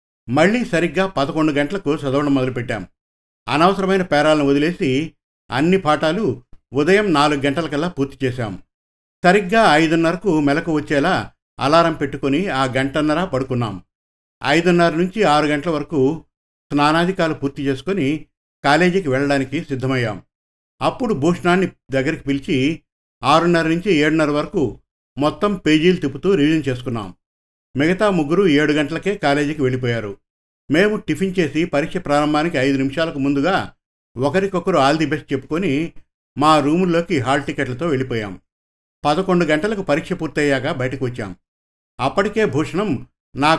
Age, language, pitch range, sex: 50-69, Telugu, 130-165 Hz, male